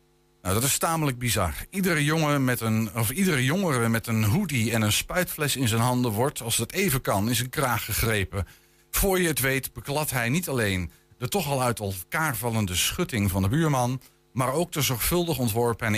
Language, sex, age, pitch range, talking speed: Dutch, male, 50-69, 95-135 Hz, 205 wpm